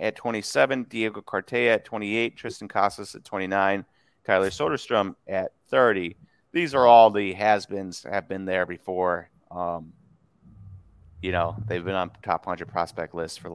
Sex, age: male, 30-49